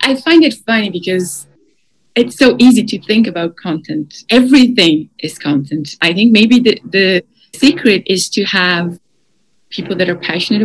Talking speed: 160 wpm